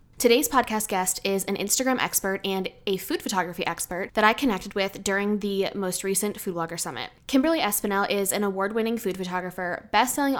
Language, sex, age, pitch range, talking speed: English, female, 10-29, 185-225 Hz, 180 wpm